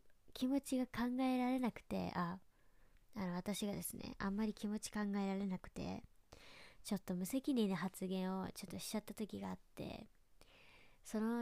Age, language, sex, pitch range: 20-39, Japanese, male, 180-205 Hz